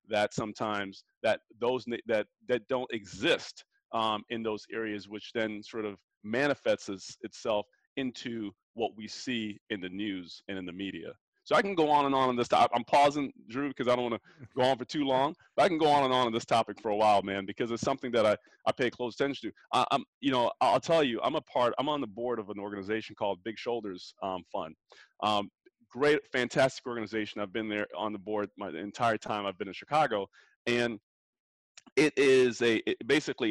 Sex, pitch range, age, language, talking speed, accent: male, 105-130 Hz, 30-49, English, 220 wpm, American